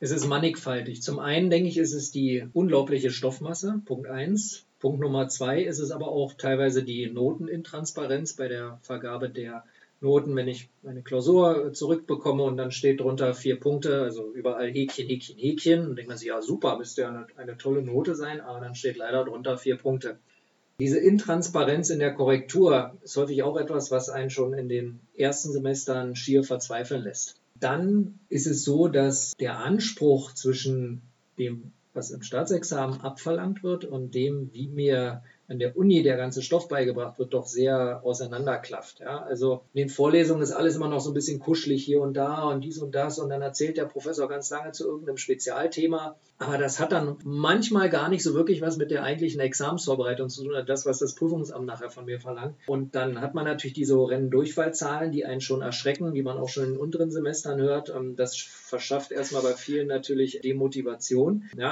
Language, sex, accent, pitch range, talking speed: German, male, German, 130-155 Hz, 190 wpm